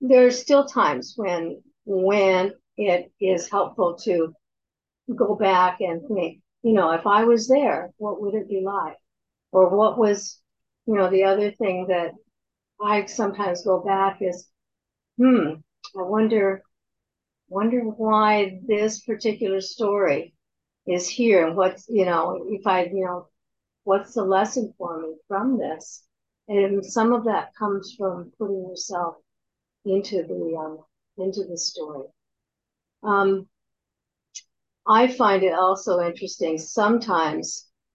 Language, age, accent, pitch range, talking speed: English, 60-79, American, 180-215 Hz, 135 wpm